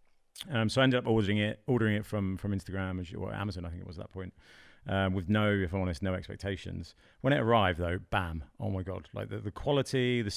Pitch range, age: 95-120 Hz, 40-59